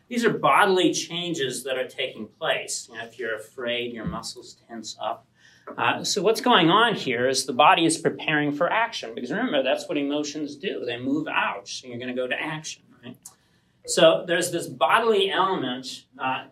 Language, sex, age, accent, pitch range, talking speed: English, male, 40-59, American, 130-180 Hz, 185 wpm